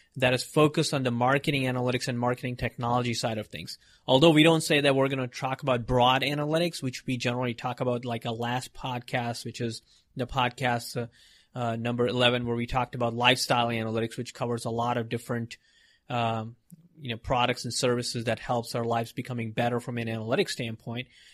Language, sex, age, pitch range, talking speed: English, male, 30-49, 120-135 Hz, 195 wpm